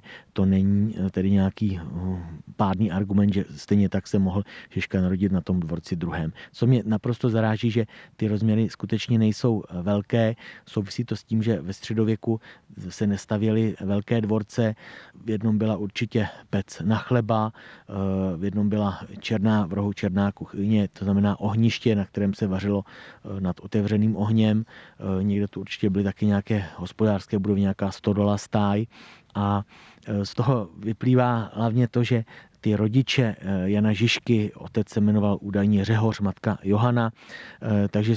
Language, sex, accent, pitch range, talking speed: Czech, male, native, 100-110 Hz, 145 wpm